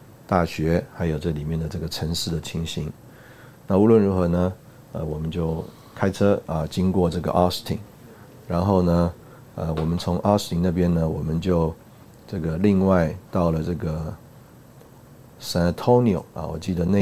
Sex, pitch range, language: male, 80-105 Hz, Chinese